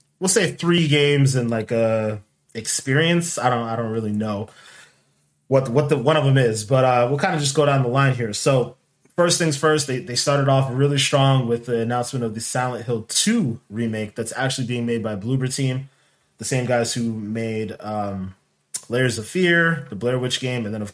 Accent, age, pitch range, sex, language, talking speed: American, 20-39, 115-140 Hz, male, English, 215 wpm